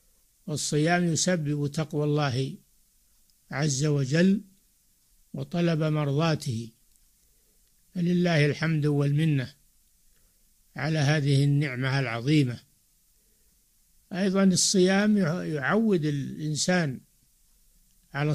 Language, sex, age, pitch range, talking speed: Arabic, male, 60-79, 145-175 Hz, 65 wpm